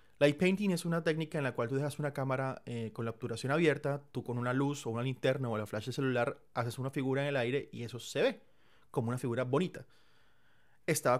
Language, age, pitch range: Spanish, 30-49, 120-155 Hz